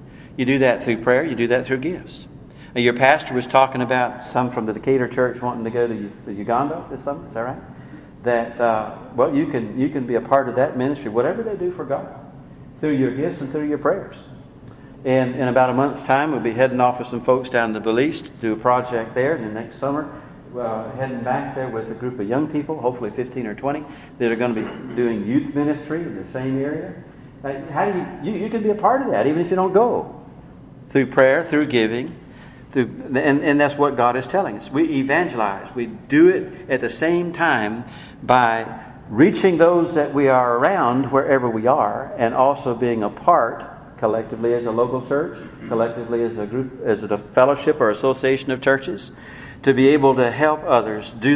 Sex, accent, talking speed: male, American, 215 wpm